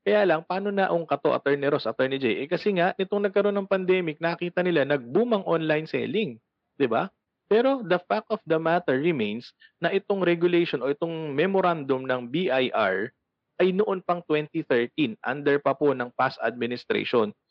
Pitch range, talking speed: 125-170 Hz, 165 wpm